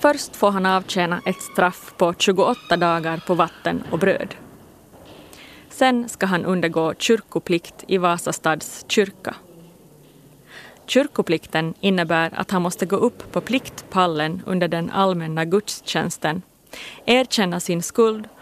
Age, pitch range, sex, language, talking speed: 30-49, 170-210 Hz, female, Swedish, 120 wpm